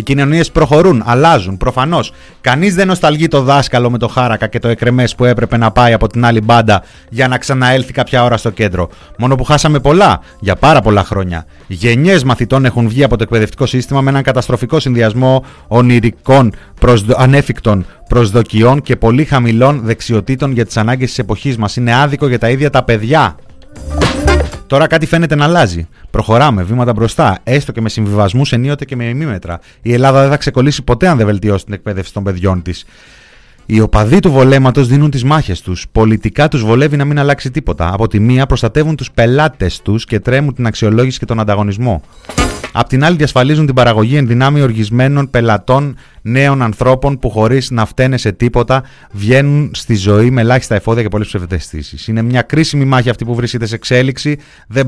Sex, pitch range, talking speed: male, 110-135 Hz, 185 wpm